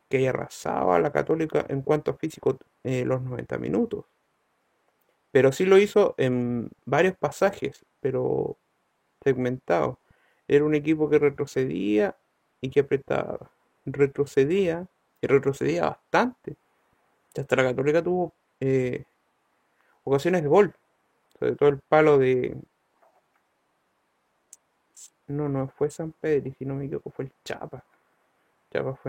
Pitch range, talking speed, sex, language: 130-165 Hz, 125 wpm, male, Spanish